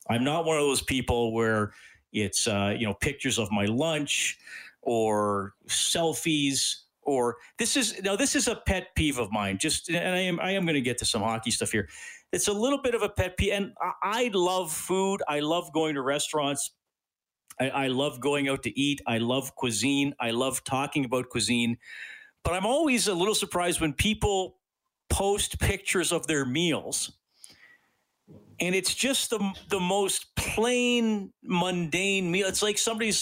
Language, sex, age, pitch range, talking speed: English, male, 40-59, 135-200 Hz, 180 wpm